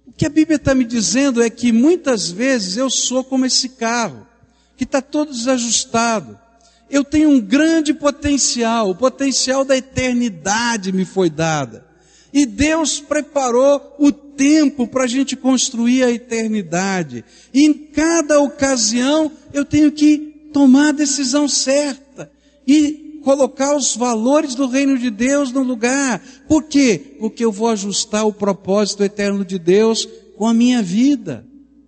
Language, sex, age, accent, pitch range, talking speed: Portuguese, male, 60-79, Brazilian, 180-275 Hz, 145 wpm